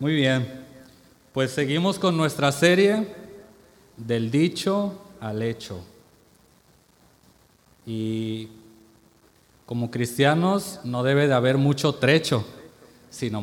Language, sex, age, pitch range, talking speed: Spanish, male, 30-49, 125-165 Hz, 95 wpm